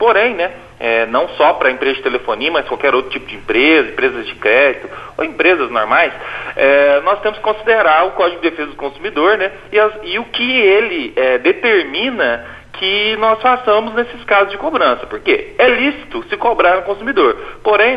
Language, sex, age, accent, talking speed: Portuguese, male, 40-59, Brazilian, 190 wpm